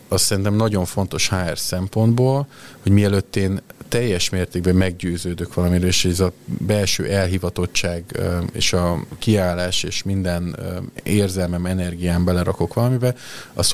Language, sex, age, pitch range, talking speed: Hungarian, male, 30-49, 90-105 Hz, 120 wpm